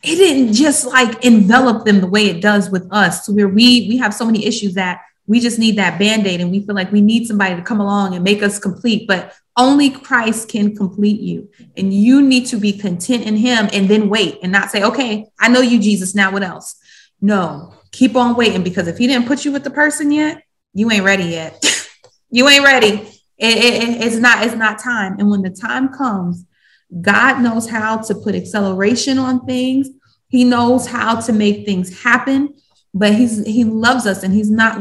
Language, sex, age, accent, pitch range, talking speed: English, female, 20-39, American, 195-240 Hz, 215 wpm